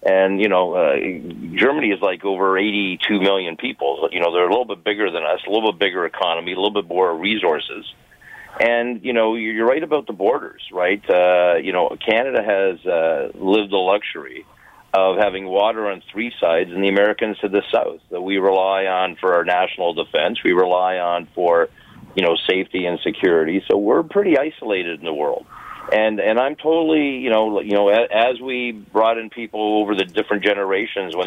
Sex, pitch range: male, 95-110 Hz